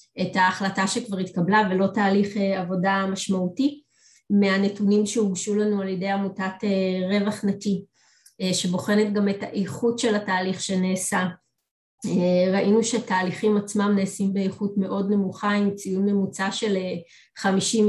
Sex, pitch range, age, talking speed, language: female, 190-210 Hz, 20-39, 115 wpm, Hebrew